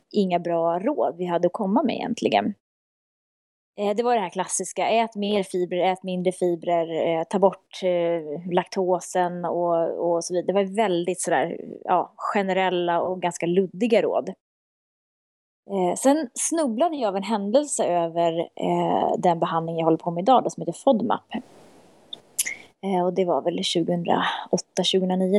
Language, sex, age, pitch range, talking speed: Swedish, female, 20-39, 175-220 Hz, 145 wpm